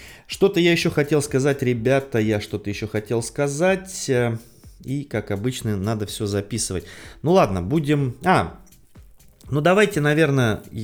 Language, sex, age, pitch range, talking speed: Russian, male, 30-49, 105-145 Hz, 135 wpm